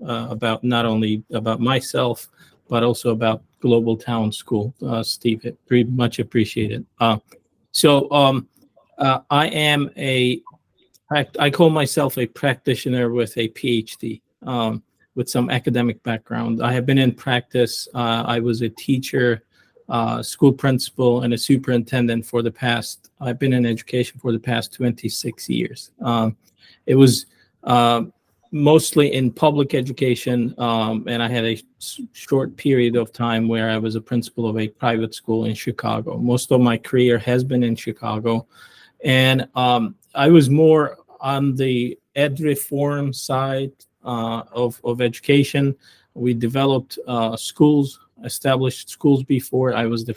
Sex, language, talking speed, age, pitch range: male, English, 150 wpm, 40-59, 115-135 Hz